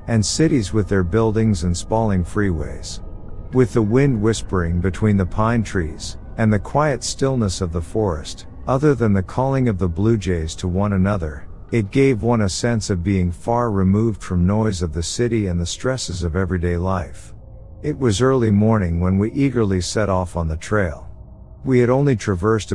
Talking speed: 185 wpm